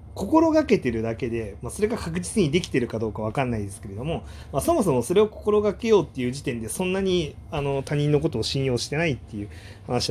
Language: Japanese